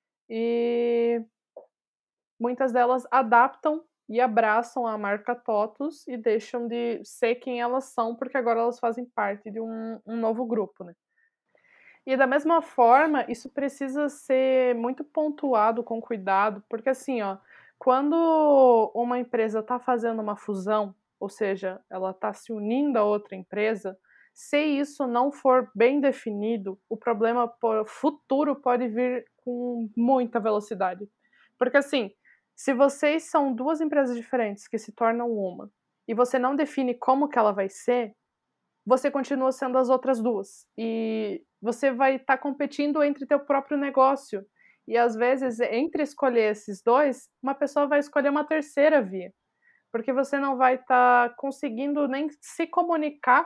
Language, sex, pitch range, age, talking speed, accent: Portuguese, female, 225-280 Hz, 20-39, 145 wpm, Brazilian